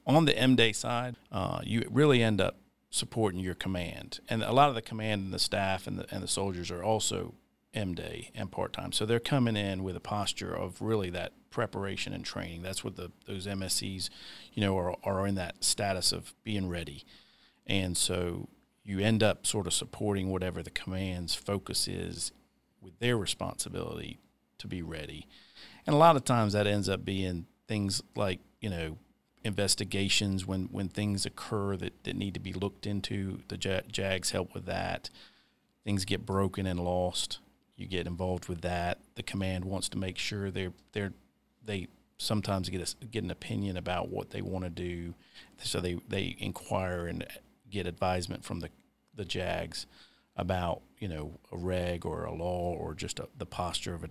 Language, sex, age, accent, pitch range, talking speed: English, male, 40-59, American, 90-105 Hz, 180 wpm